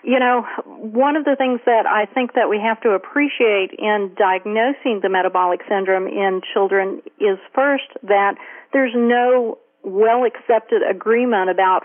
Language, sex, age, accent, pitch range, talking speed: English, female, 40-59, American, 195-255 Hz, 145 wpm